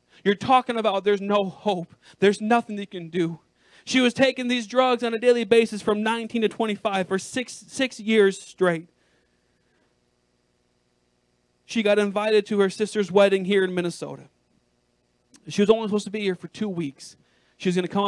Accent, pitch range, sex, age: American, 165-225 Hz, male, 40-59